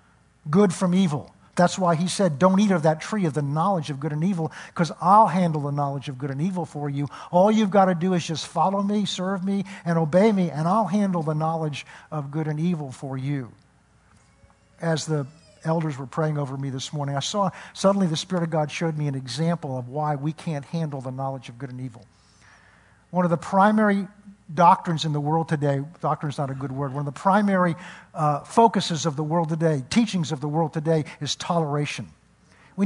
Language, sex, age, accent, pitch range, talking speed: English, male, 50-69, American, 145-185 Hz, 215 wpm